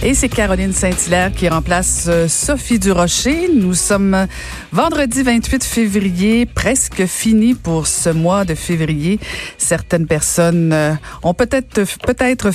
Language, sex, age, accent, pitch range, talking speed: French, female, 50-69, Canadian, 155-200 Hz, 120 wpm